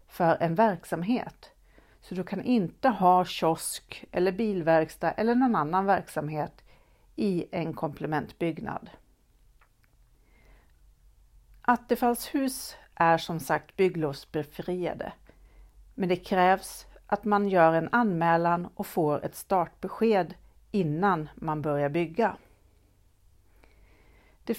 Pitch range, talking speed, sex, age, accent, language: 155-205 Hz, 100 wpm, female, 50-69, native, Swedish